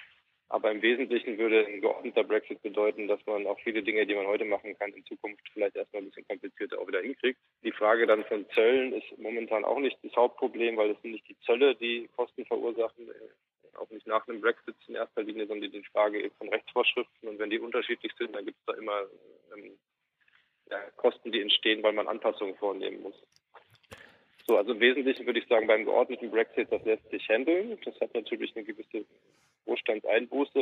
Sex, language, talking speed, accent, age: male, German, 200 wpm, German, 20-39